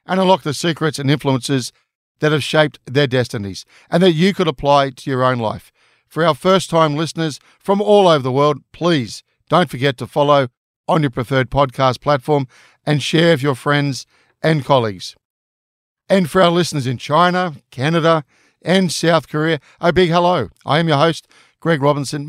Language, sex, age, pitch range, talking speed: English, male, 50-69, 130-160 Hz, 175 wpm